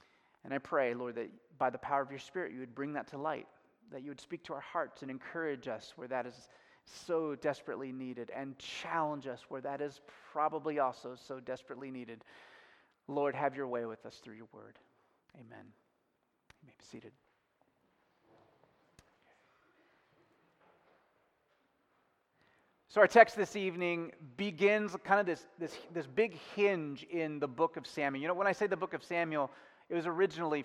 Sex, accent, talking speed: male, American, 170 wpm